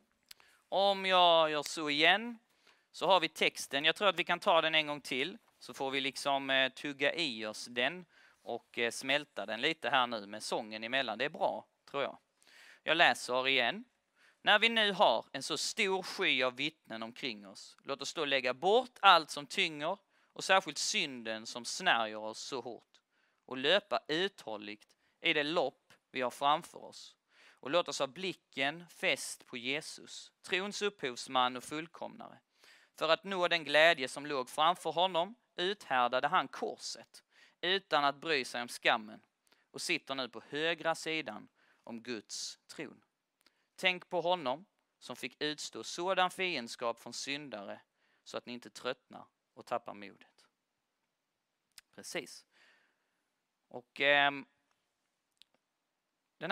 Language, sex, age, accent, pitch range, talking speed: Swedish, male, 30-49, native, 125-180 Hz, 155 wpm